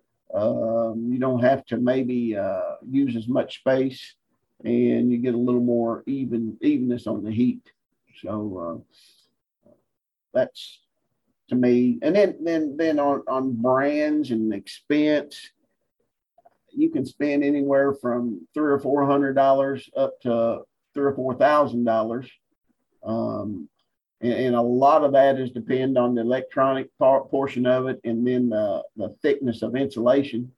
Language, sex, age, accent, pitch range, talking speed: English, male, 50-69, American, 120-140 Hz, 150 wpm